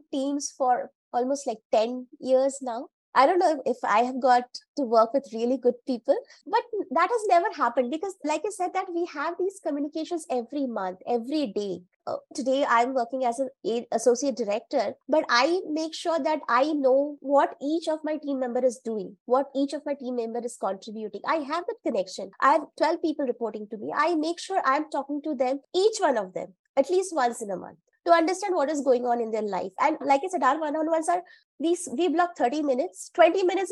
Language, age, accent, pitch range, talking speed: English, 20-39, Indian, 240-330 Hz, 210 wpm